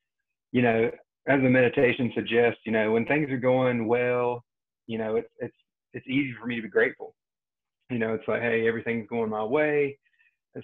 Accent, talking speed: American, 190 wpm